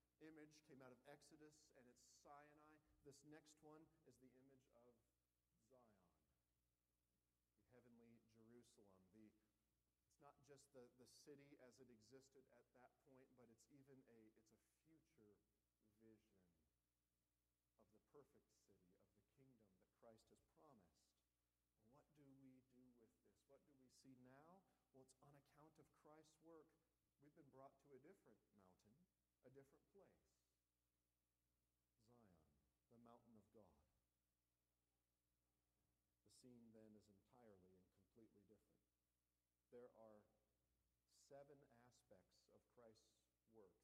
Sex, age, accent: male, 40-59, American